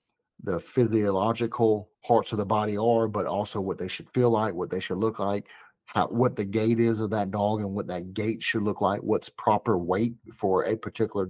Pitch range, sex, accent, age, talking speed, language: 100-115 Hz, male, American, 50-69, 205 wpm, English